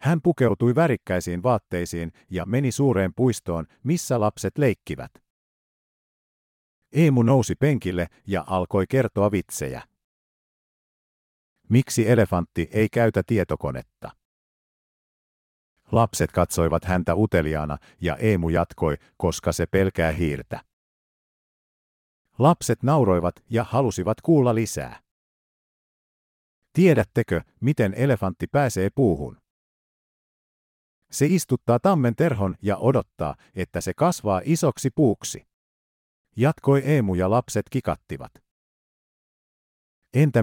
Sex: male